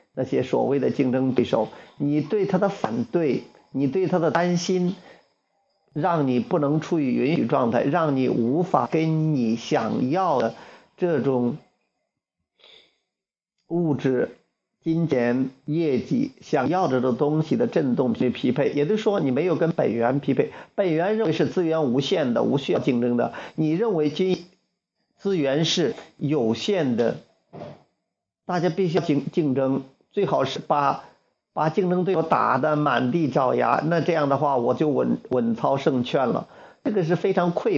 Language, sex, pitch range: Chinese, male, 135-180 Hz